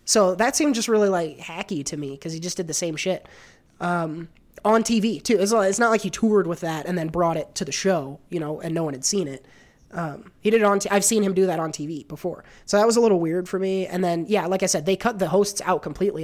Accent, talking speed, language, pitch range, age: American, 280 wpm, English, 160-195 Hz, 20-39